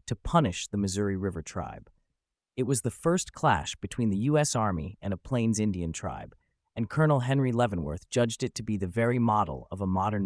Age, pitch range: 30-49, 95-125 Hz